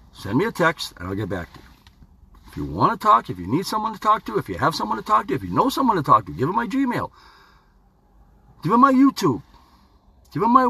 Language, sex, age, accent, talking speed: English, male, 50-69, American, 265 wpm